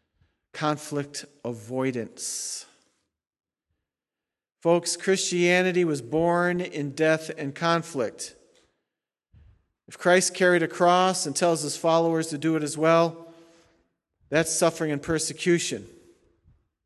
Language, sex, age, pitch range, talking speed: English, male, 50-69, 155-175 Hz, 100 wpm